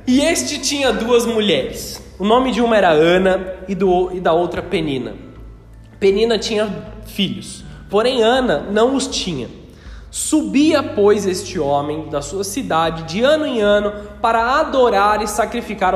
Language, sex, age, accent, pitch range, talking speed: Portuguese, male, 20-39, Brazilian, 185-250 Hz, 145 wpm